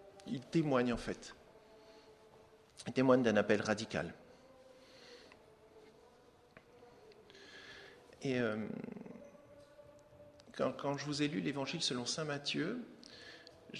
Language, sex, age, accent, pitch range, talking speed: French, male, 50-69, French, 140-195 Hz, 95 wpm